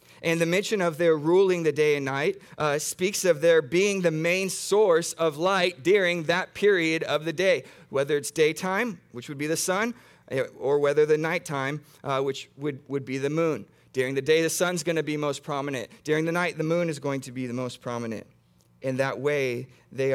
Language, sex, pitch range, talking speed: English, male, 135-175 Hz, 210 wpm